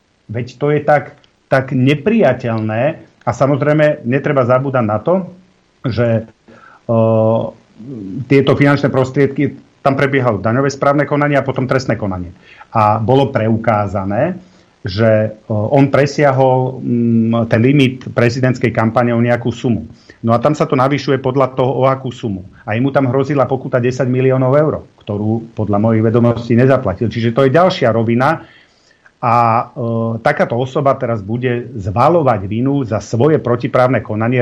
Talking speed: 145 wpm